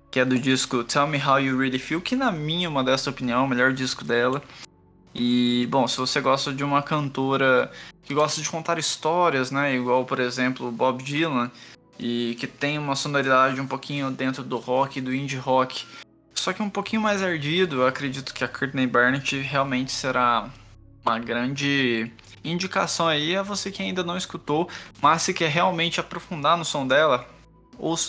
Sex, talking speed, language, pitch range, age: male, 180 wpm, Portuguese, 120-155 Hz, 20-39